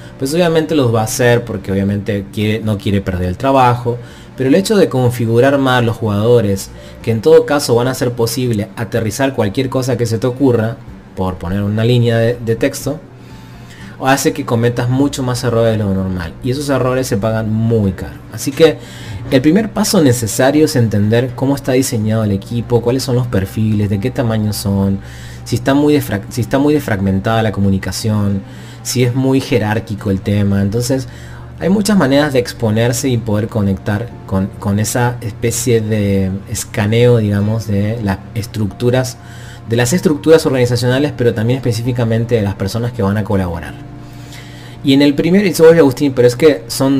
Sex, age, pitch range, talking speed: male, 30-49, 105-130 Hz, 175 wpm